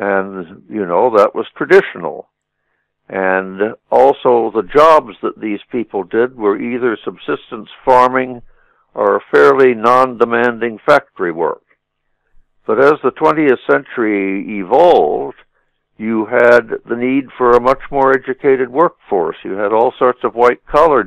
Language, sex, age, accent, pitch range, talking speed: English, male, 60-79, American, 110-135 Hz, 130 wpm